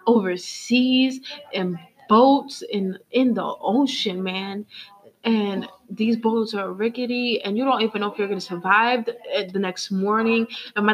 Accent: American